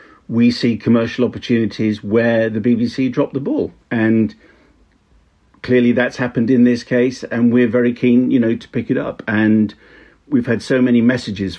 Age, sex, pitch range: 50-69, male, 105-125 Hz